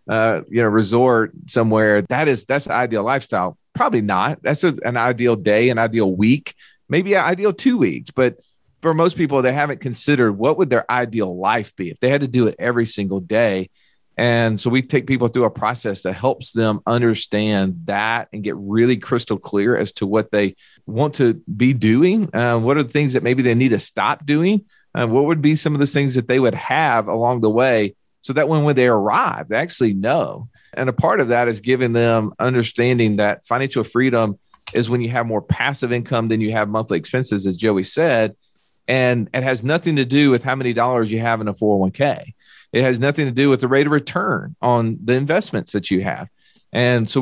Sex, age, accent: male, 40-59, American